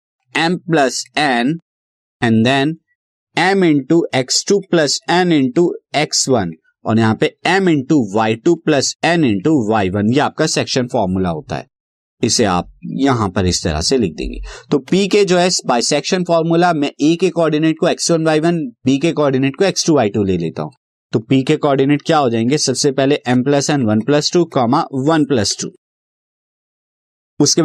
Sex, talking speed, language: male, 145 wpm, Hindi